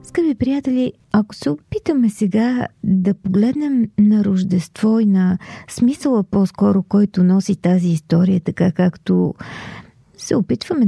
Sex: female